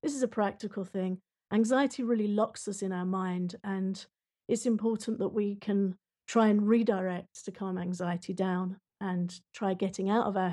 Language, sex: English, female